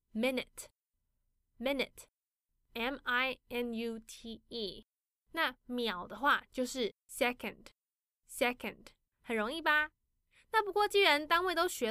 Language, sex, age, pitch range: Chinese, female, 10-29, 230-290 Hz